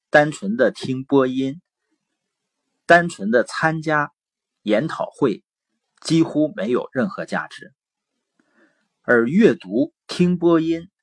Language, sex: Chinese, male